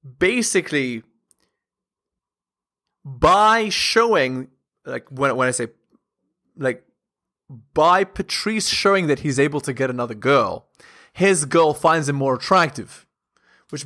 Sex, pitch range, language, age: male, 130-170 Hz, English, 20-39